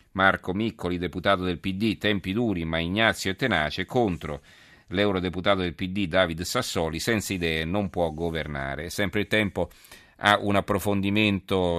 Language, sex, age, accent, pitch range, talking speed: Italian, male, 40-59, native, 85-105 Hz, 145 wpm